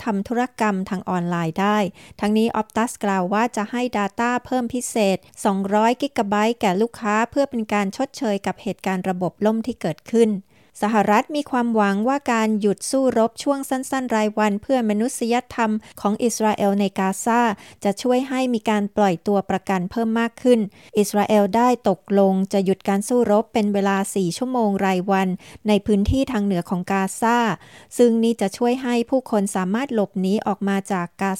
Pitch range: 195-235 Hz